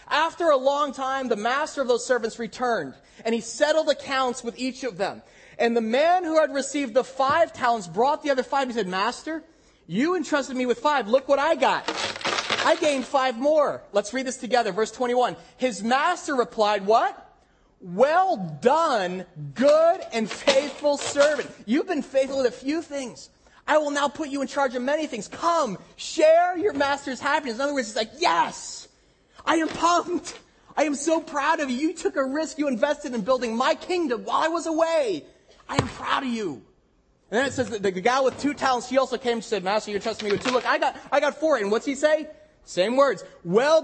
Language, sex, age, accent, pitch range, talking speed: English, male, 30-49, American, 240-305 Hz, 210 wpm